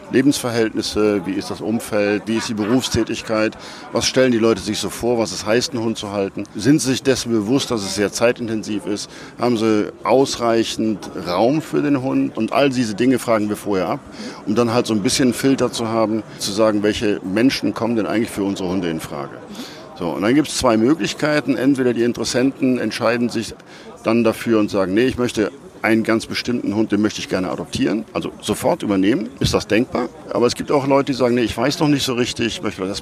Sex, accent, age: male, German, 50-69